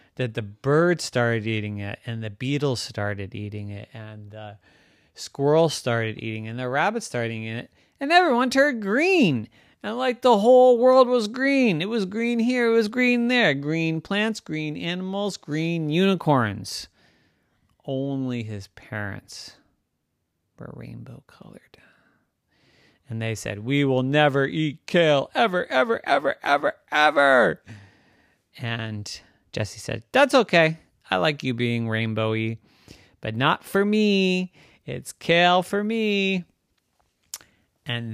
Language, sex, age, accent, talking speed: English, male, 30-49, American, 135 wpm